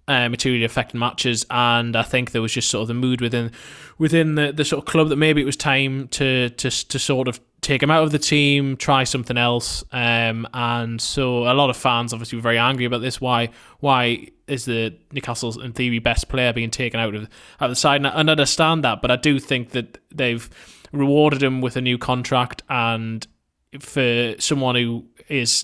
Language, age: English, 20-39